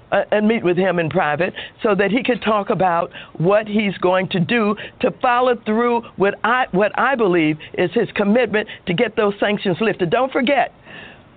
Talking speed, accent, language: 185 wpm, American, English